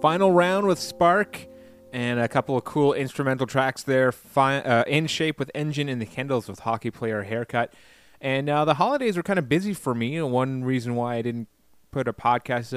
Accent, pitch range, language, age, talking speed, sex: American, 110-135 Hz, English, 20-39, 200 wpm, male